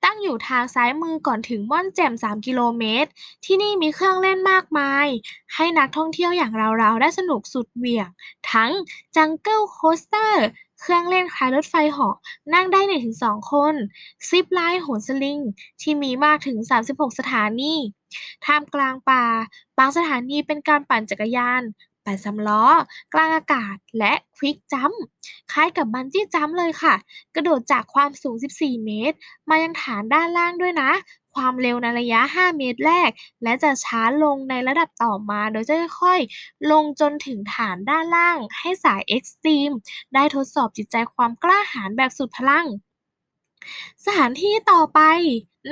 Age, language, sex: 10-29, Thai, female